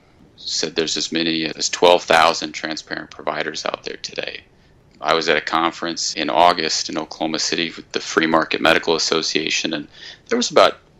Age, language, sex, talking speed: 30-49, English, male, 170 wpm